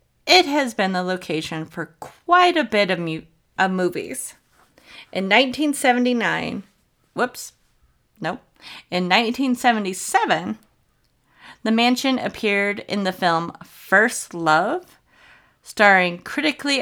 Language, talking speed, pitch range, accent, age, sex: English, 100 wpm, 180-255 Hz, American, 30-49, female